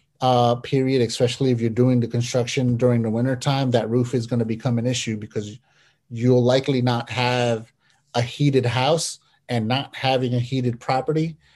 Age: 30-49